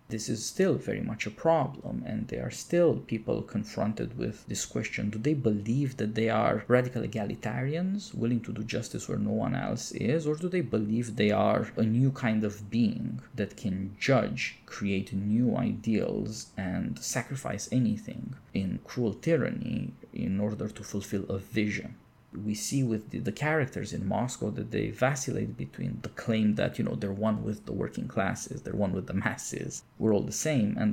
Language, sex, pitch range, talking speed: English, male, 105-130 Hz, 185 wpm